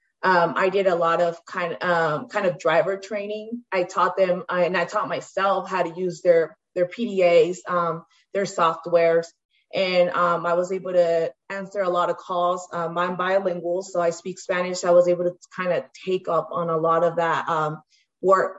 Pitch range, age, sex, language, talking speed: 170-195 Hz, 20-39, female, English, 200 wpm